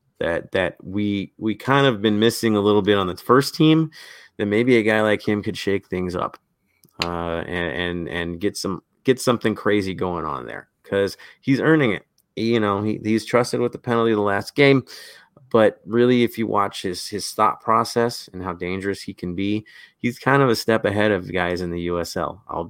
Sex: male